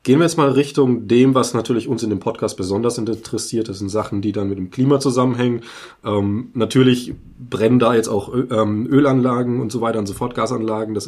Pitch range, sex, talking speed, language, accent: 110-130 Hz, male, 200 wpm, German, German